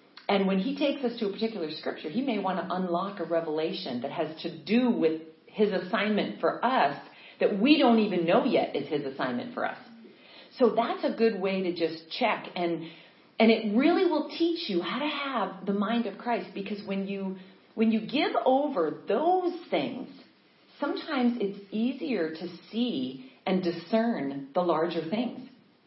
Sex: female